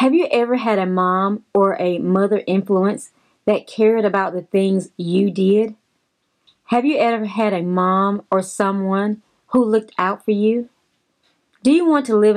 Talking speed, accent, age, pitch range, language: 170 wpm, American, 30-49, 185-240 Hz, English